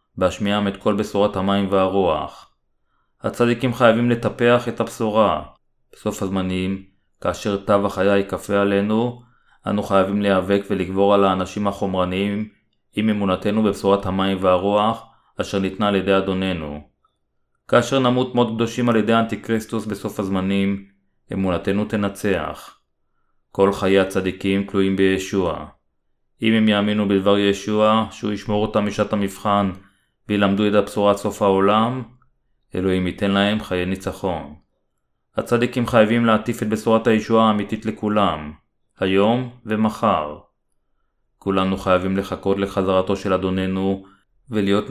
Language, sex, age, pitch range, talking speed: Hebrew, male, 30-49, 95-110 Hz, 120 wpm